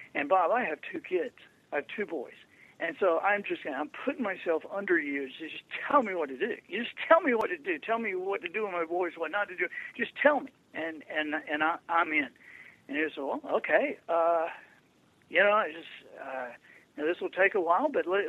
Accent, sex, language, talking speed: American, male, English, 230 wpm